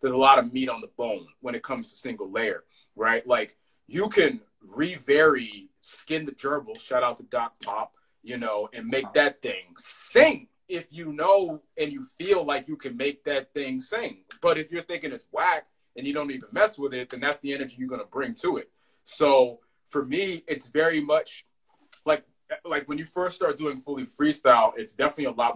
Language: English